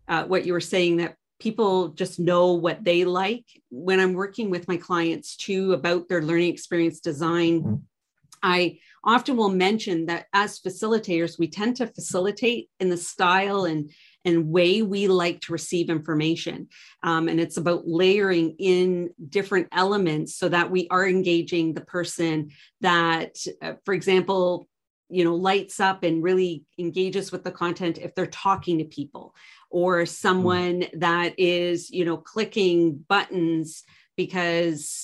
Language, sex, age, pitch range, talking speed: English, female, 40-59, 170-190 Hz, 150 wpm